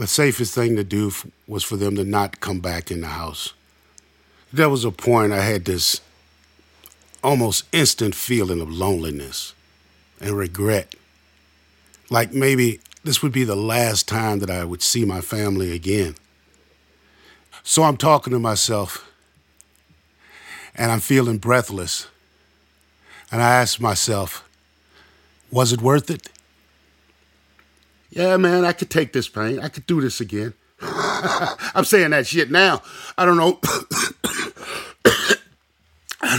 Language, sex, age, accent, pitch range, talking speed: English, male, 50-69, American, 75-125 Hz, 135 wpm